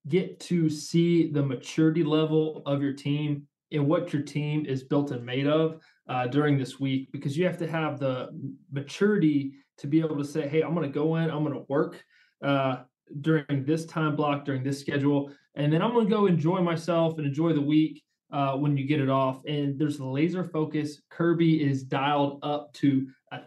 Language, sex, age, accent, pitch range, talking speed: English, male, 20-39, American, 140-160 Hz, 200 wpm